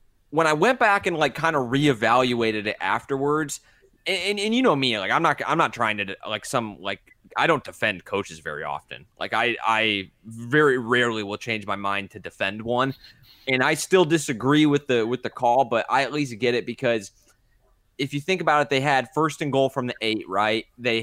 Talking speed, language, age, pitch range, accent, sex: 215 wpm, English, 20-39, 115-150 Hz, American, male